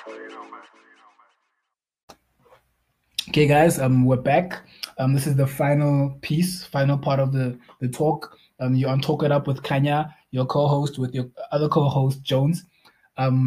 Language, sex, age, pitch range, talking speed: English, male, 20-39, 125-150 Hz, 145 wpm